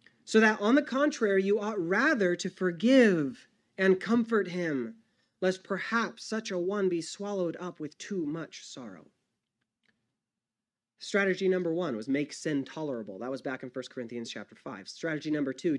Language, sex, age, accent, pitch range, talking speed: English, male, 30-49, American, 135-190 Hz, 165 wpm